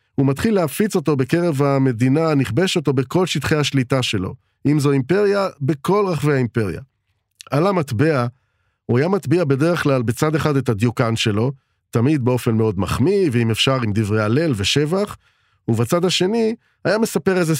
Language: Hebrew